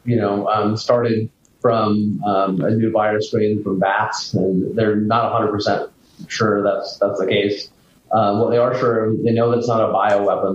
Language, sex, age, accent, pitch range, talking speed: English, male, 30-49, American, 100-120 Hz, 190 wpm